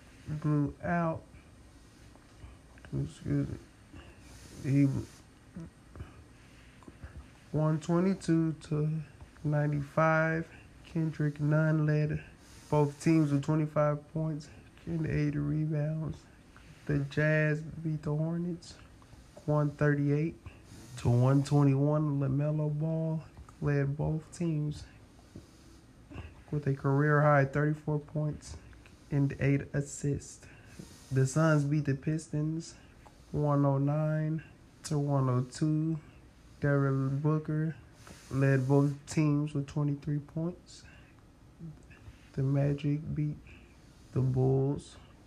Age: 20-39